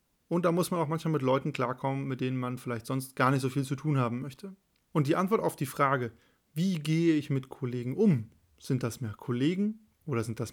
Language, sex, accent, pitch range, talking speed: German, male, German, 130-160 Hz, 235 wpm